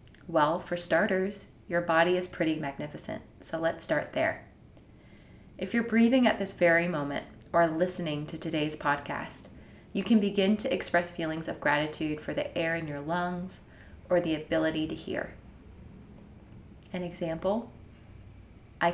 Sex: female